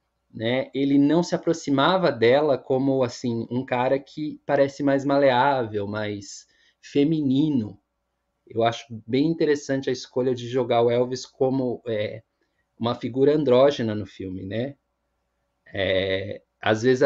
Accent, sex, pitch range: Brazilian, male, 120-160 Hz